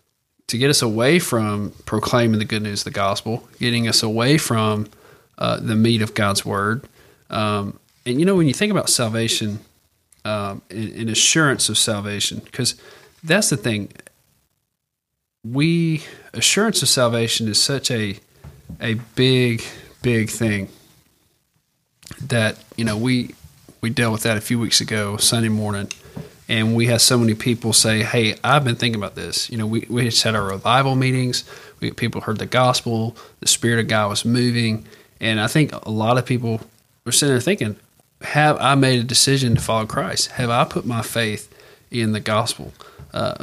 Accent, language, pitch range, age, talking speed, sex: American, English, 110-130 Hz, 40-59, 175 wpm, male